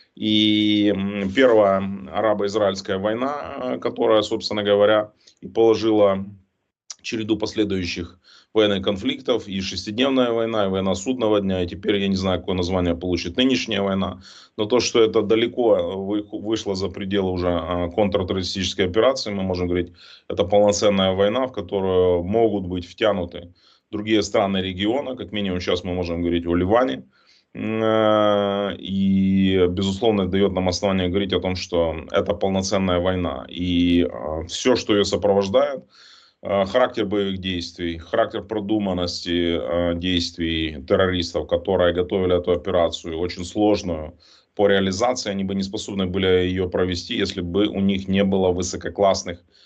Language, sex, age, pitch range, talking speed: Russian, male, 30-49, 90-105 Hz, 130 wpm